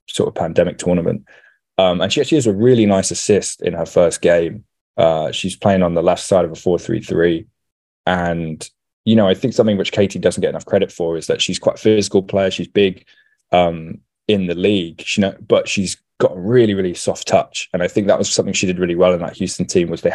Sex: male